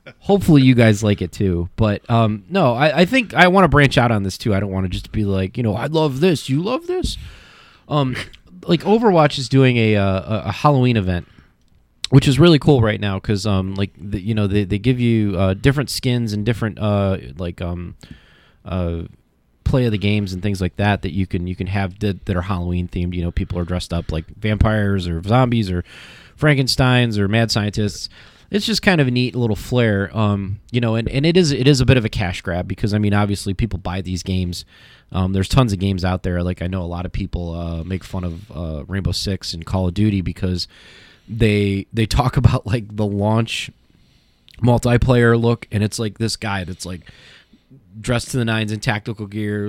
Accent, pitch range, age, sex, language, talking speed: American, 95-120 Hz, 20-39, male, English, 220 wpm